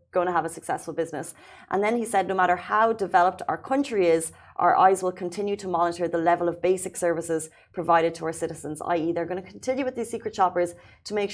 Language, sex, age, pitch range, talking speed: Arabic, female, 30-49, 175-215 Hz, 230 wpm